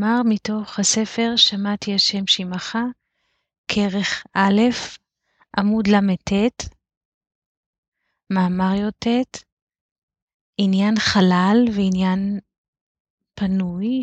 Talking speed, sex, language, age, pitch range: 65 wpm, female, Hebrew, 30-49, 180-210 Hz